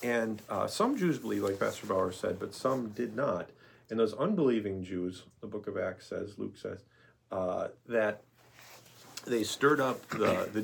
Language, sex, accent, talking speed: English, male, American, 175 wpm